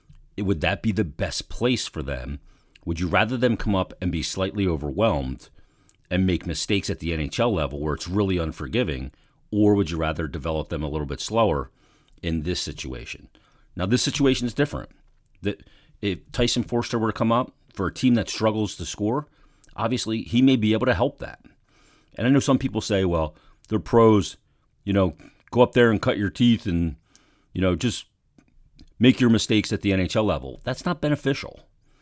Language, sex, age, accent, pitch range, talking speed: English, male, 40-59, American, 80-115 Hz, 190 wpm